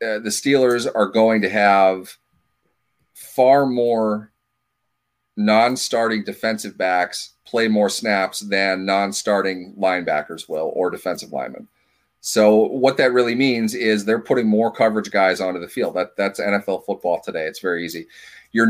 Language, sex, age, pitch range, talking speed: English, male, 40-59, 105-125 Hz, 145 wpm